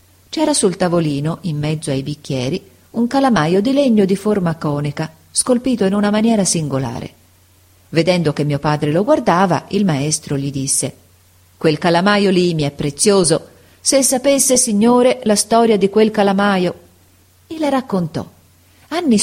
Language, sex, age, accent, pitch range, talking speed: Italian, female, 40-59, native, 150-205 Hz, 145 wpm